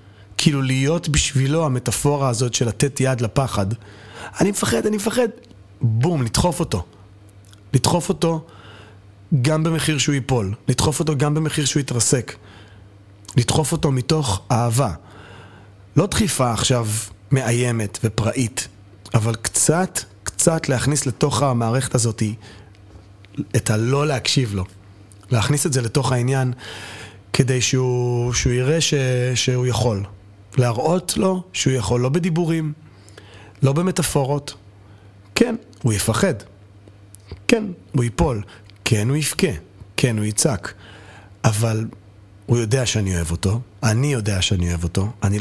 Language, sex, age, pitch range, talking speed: Hebrew, male, 30-49, 100-135 Hz, 120 wpm